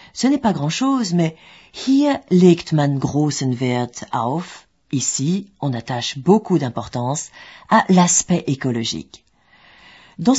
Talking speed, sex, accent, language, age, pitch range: 115 wpm, female, French, French, 40-59, 130-185 Hz